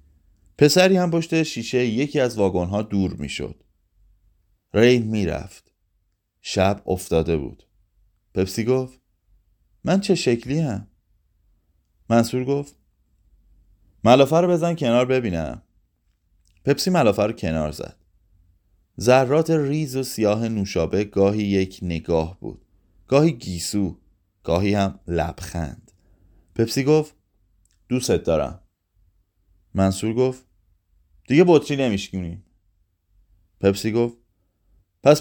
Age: 30-49